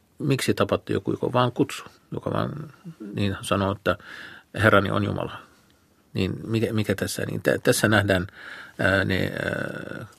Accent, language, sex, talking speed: native, Finnish, male, 140 wpm